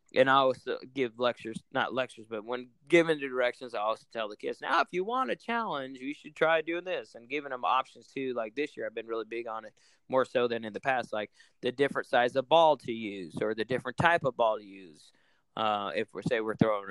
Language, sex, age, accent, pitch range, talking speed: English, male, 20-39, American, 120-165 Hz, 250 wpm